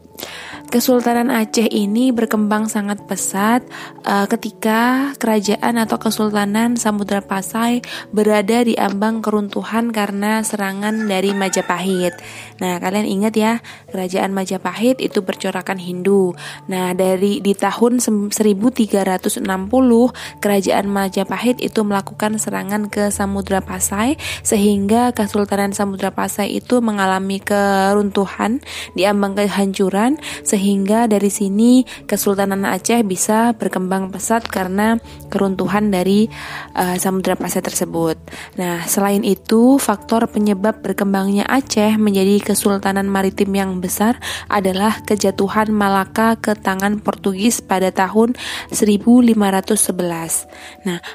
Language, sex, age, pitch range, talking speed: Malay, female, 20-39, 195-225 Hz, 105 wpm